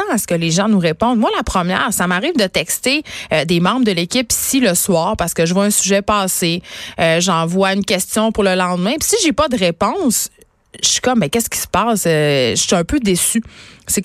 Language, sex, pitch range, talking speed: French, female, 175-210 Hz, 250 wpm